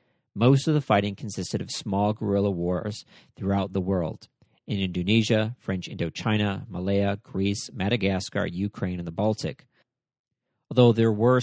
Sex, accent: male, American